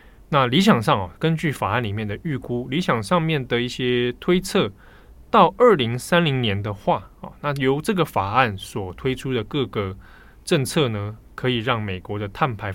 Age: 20-39